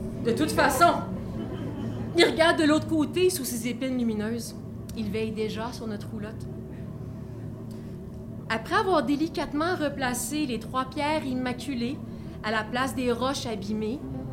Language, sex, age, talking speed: French, female, 30-49, 135 wpm